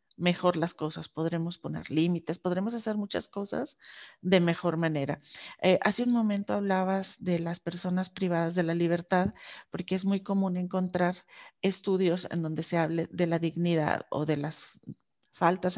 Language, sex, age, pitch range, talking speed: Spanish, female, 40-59, 170-205 Hz, 160 wpm